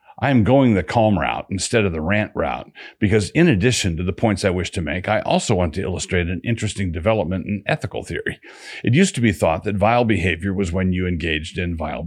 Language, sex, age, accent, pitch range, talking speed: English, male, 50-69, American, 90-110 Hz, 230 wpm